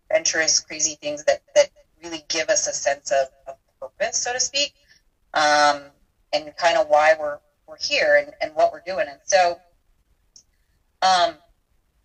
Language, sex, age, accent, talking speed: English, female, 30-49, American, 160 wpm